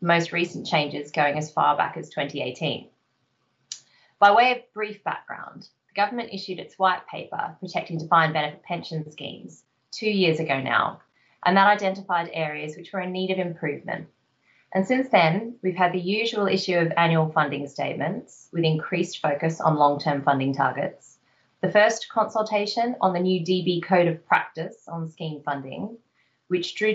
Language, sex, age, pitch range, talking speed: English, female, 20-39, 160-200 Hz, 165 wpm